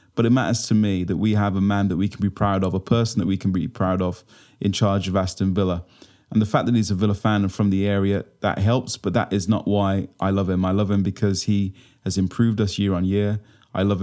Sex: male